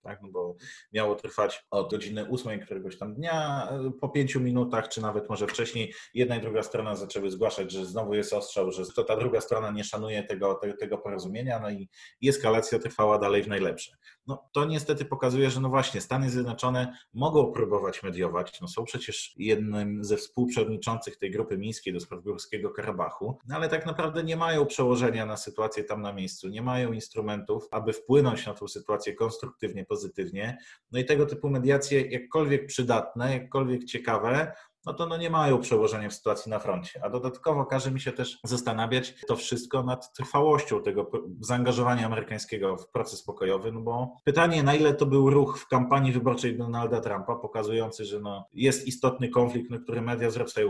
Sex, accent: male, native